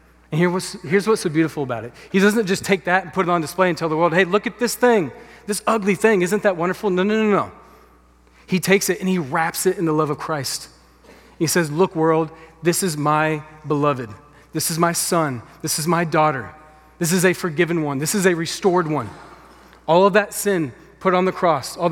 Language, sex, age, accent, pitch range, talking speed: English, male, 30-49, American, 150-185 Hz, 225 wpm